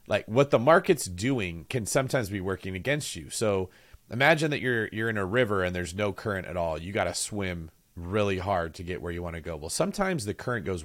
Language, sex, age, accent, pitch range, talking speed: English, male, 40-59, American, 90-125 Hz, 240 wpm